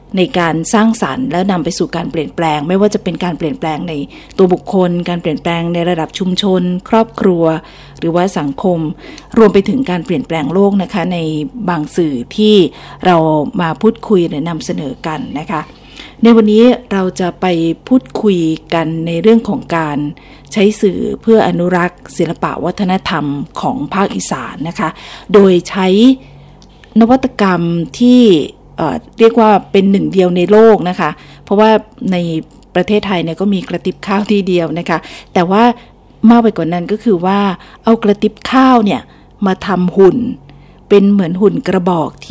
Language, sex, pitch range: Thai, female, 170-210 Hz